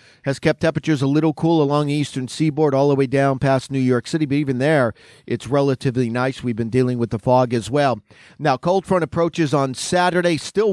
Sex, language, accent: male, English, American